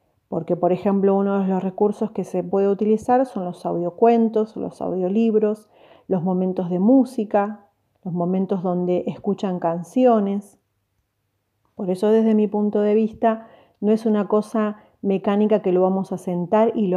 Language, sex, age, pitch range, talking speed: Spanish, female, 30-49, 180-215 Hz, 155 wpm